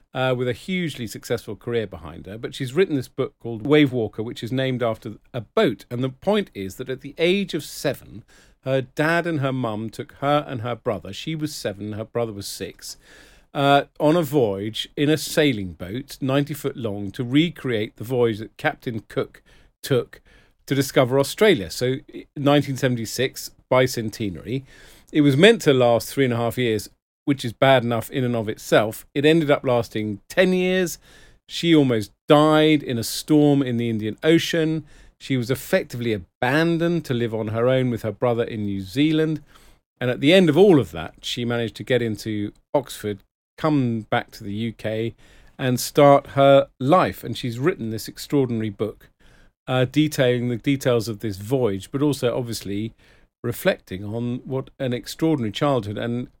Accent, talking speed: British, 180 wpm